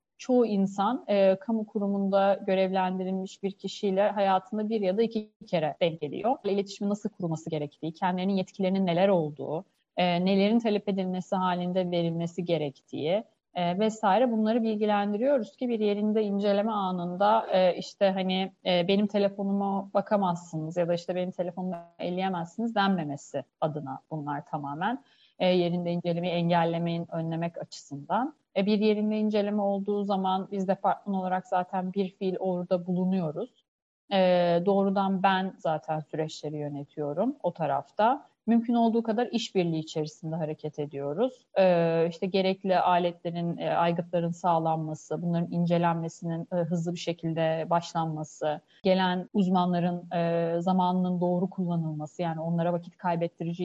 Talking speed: 125 wpm